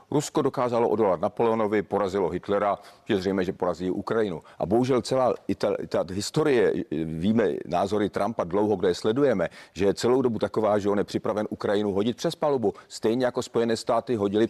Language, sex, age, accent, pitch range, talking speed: Czech, male, 40-59, native, 105-130 Hz, 170 wpm